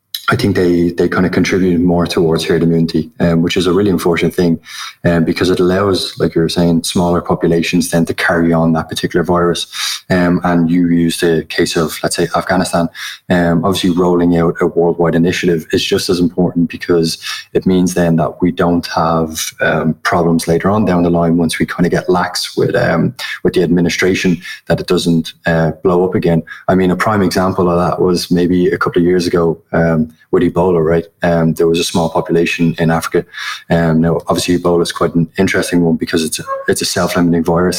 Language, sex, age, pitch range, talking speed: English, male, 20-39, 80-90 Hz, 210 wpm